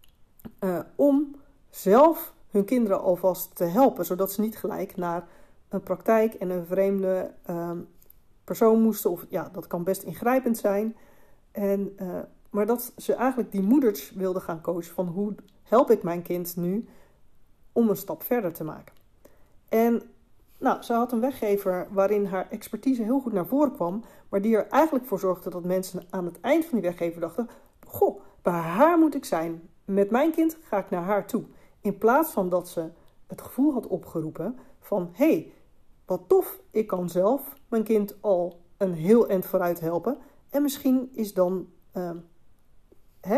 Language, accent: Dutch, Dutch